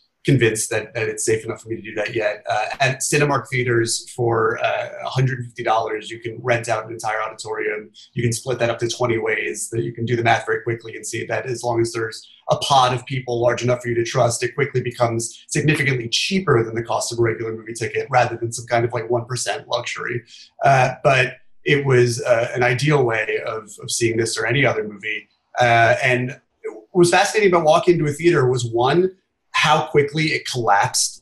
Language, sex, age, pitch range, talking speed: English, male, 30-49, 120-145 Hz, 215 wpm